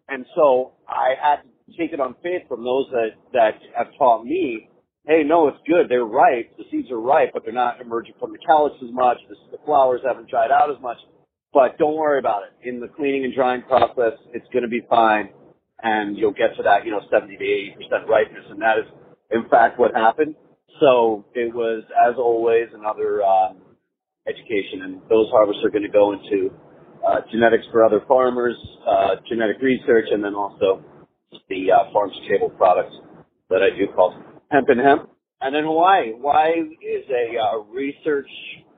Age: 40-59